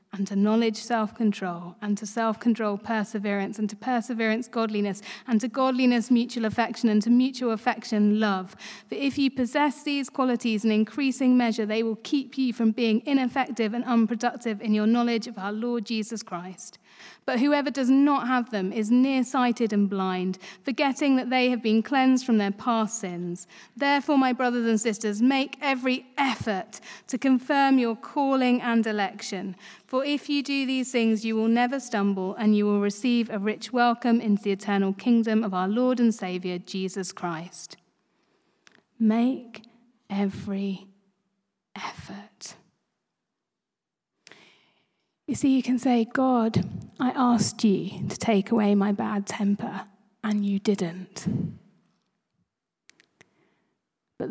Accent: British